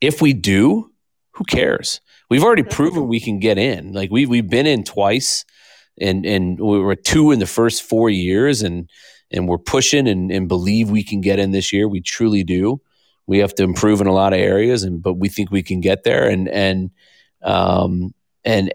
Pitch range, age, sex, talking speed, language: 95-110 Hz, 30-49, male, 210 wpm, English